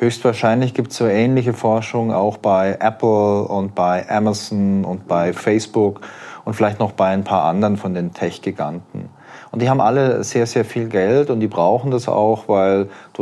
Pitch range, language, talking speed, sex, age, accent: 100-120 Hz, German, 180 wpm, male, 30-49, German